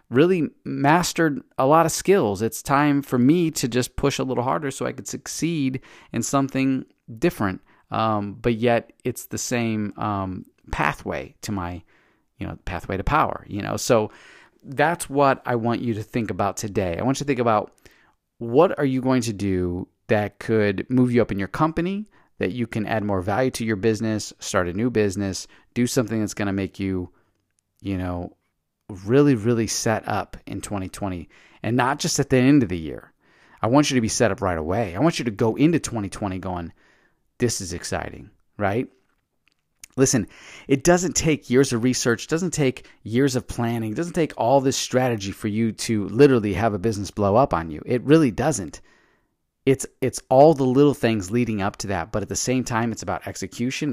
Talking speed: 195 wpm